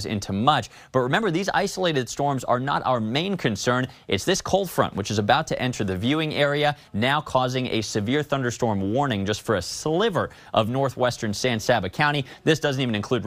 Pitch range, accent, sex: 110-145 Hz, American, male